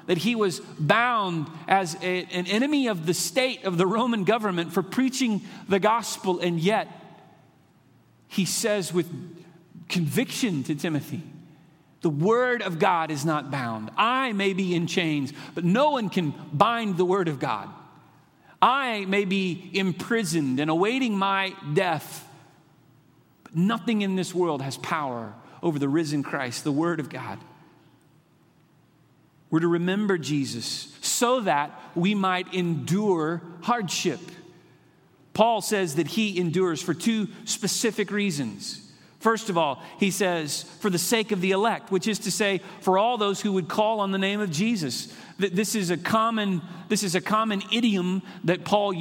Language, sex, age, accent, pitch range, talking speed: English, male, 40-59, American, 160-205 Hz, 155 wpm